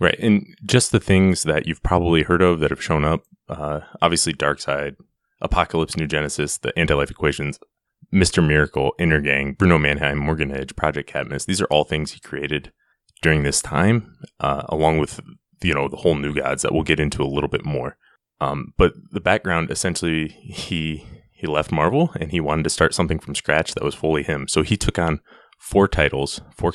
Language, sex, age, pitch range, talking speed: English, male, 20-39, 75-90 Hz, 190 wpm